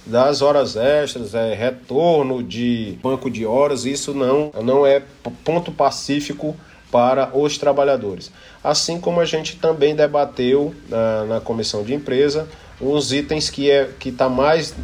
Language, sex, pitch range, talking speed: Portuguese, male, 120-145 Hz, 150 wpm